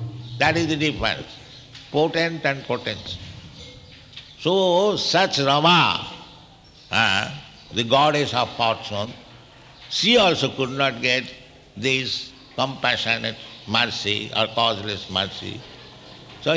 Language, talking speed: English, 95 wpm